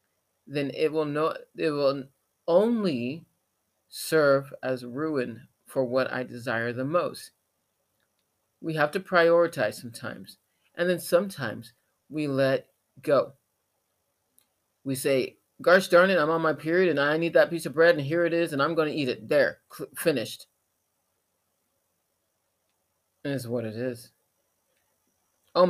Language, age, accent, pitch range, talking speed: English, 40-59, American, 125-170 Hz, 145 wpm